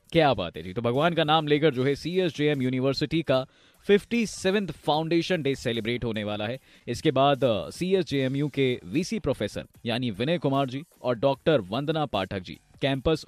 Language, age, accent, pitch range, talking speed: Hindi, 20-39, native, 125-175 Hz, 135 wpm